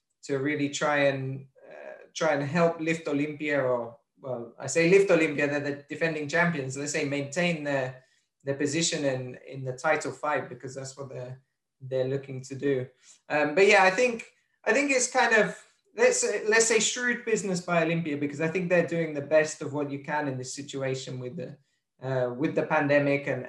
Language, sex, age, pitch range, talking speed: English, male, 20-39, 140-160 Hz, 200 wpm